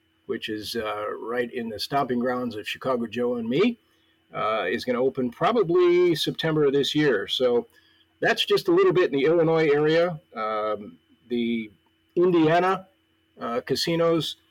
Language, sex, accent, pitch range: English, male, American, 130-180 Hz